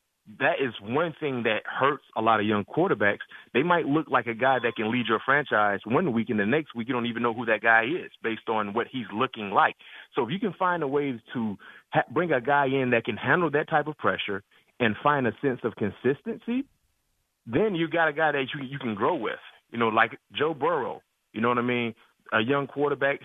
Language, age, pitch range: English, 30-49, 120-150 Hz